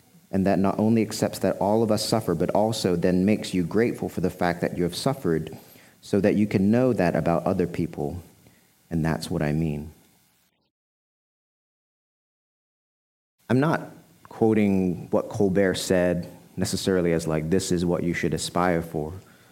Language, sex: English, male